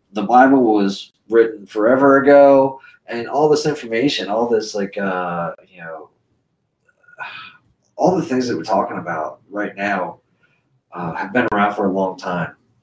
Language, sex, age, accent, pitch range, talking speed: English, male, 30-49, American, 110-165 Hz, 155 wpm